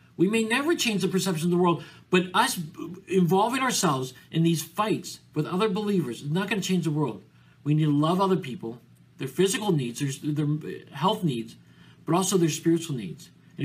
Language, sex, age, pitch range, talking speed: English, male, 40-59, 120-175 Hz, 200 wpm